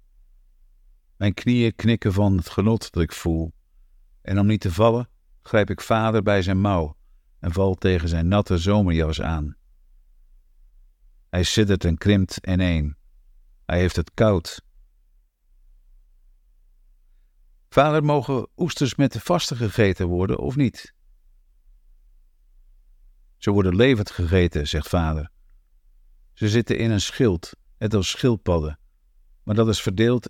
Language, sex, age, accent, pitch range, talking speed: Dutch, male, 50-69, Dutch, 75-105 Hz, 125 wpm